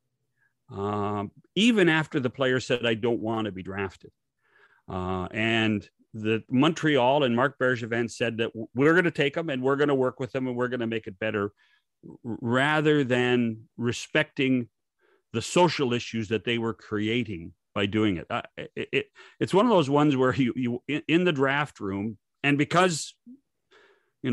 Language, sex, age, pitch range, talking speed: English, male, 50-69, 110-145 Hz, 180 wpm